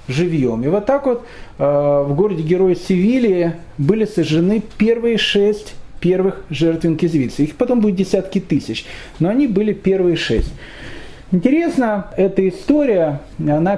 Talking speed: 135 wpm